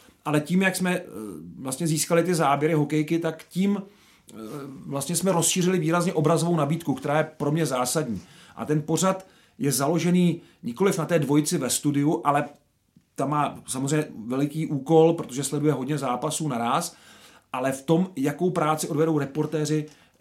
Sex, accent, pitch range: male, native, 145-165 Hz